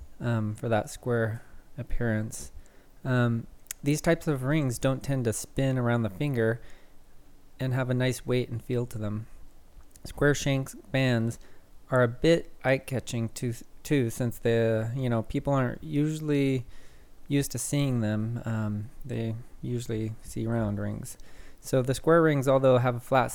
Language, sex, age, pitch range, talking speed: English, male, 20-39, 110-135 Hz, 155 wpm